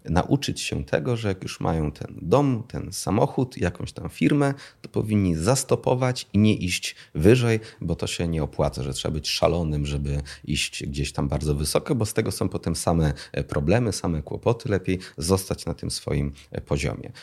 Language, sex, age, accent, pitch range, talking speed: Polish, male, 40-59, native, 80-115 Hz, 180 wpm